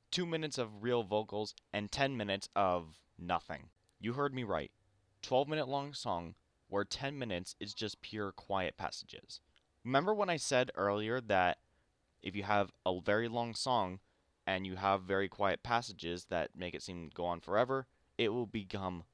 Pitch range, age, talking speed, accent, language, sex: 95-120 Hz, 20-39, 175 wpm, American, English, male